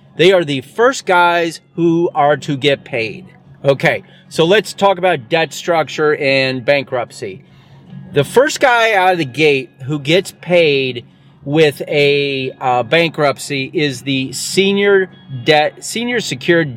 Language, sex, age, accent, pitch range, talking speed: English, male, 30-49, American, 135-185 Hz, 140 wpm